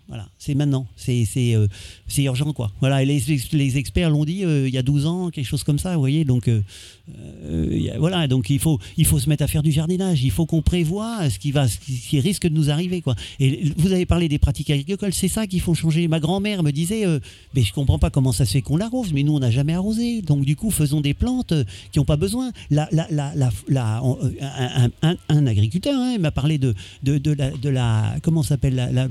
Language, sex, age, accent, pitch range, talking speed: French, male, 50-69, French, 130-175 Hz, 255 wpm